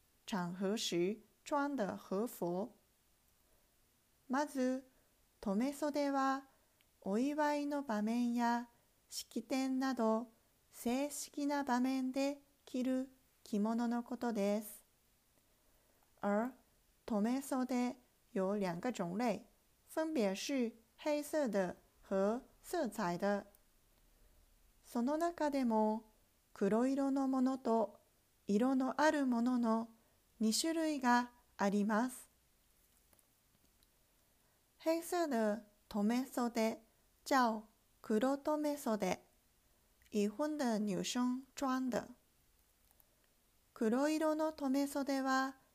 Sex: female